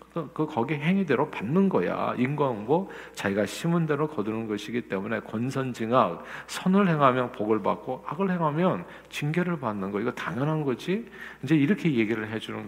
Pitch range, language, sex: 120-180 Hz, Korean, male